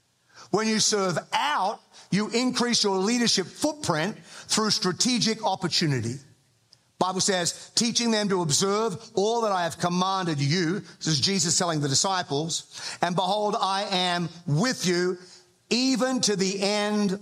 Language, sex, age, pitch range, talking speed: English, male, 50-69, 155-200 Hz, 140 wpm